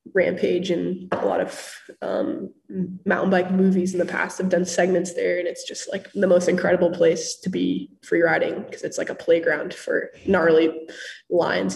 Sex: female